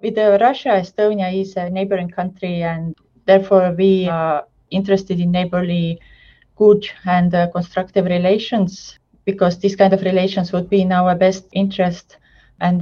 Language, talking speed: English, 150 wpm